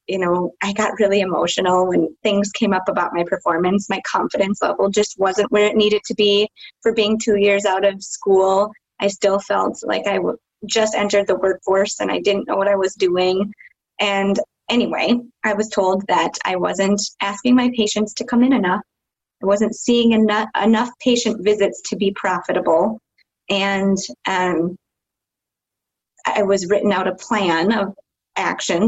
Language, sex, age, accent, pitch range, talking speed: English, female, 20-39, American, 190-215 Hz, 170 wpm